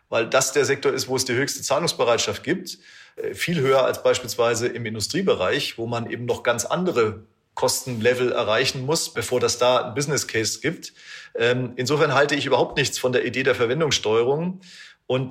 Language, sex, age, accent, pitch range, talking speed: German, male, 40-59, German, 125-175 Hz, 175 wpm